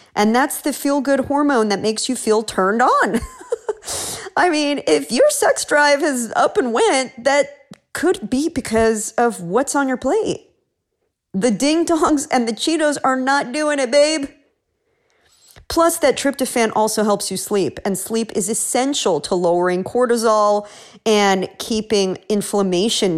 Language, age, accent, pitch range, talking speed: English, 40-59, American, 190-285 Hz, 150 wpm